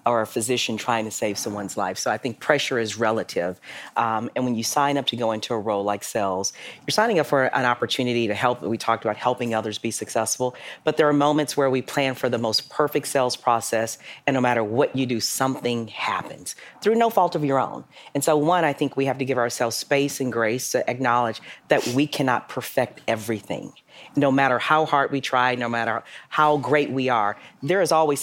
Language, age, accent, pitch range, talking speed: English, 40-59, American, 115-145 Hz, 220 wpm